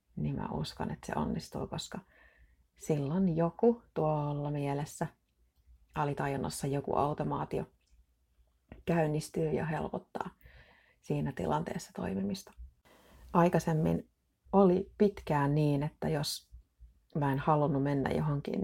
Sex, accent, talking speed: female, native, 100 wpm